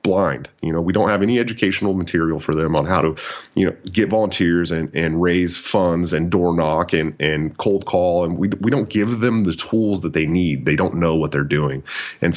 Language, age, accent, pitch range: English, 30-49, American, 80-100 Hz